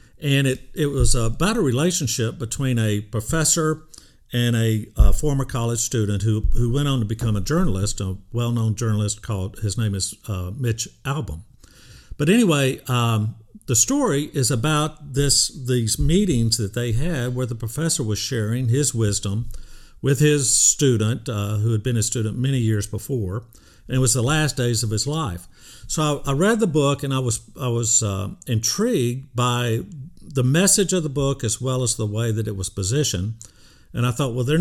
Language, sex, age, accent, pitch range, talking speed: English, male, 50-69, American, 110-140 Hz, 190 wpm